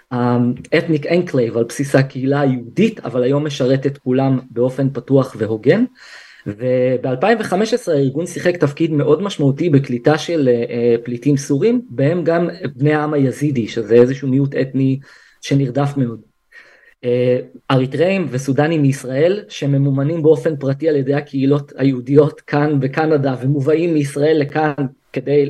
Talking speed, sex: 125 wpm, male